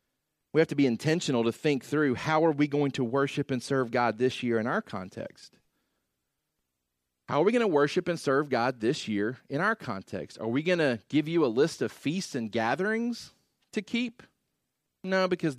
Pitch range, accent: 115-160 Hz, American